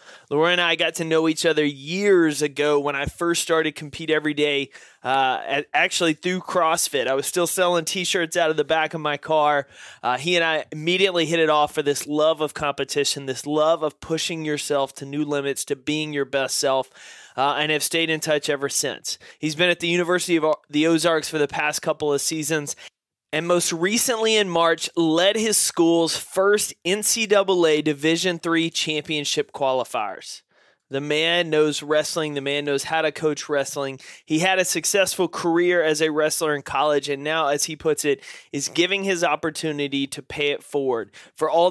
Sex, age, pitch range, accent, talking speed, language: male, 20-39, 145-170 Hz, American, 190 wpm, English